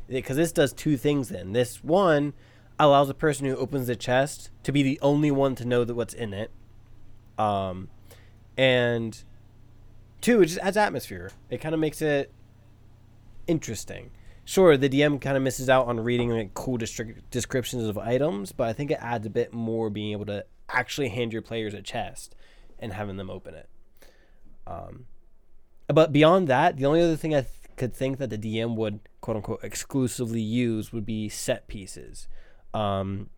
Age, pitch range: 20-39, 105-125 Hz